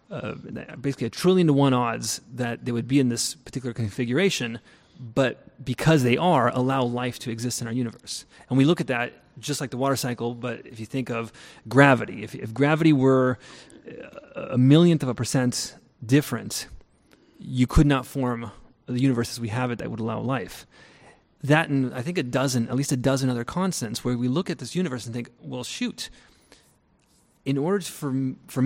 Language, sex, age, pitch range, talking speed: English, male, 30-49, 125-145 Hz, 190 wpm